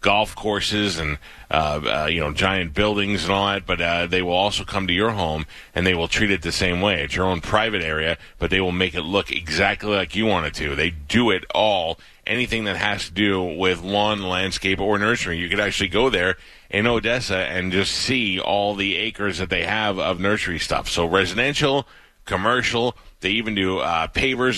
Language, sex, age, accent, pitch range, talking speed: English, male, 30-49, American, 95-115 Hz, 210 wpm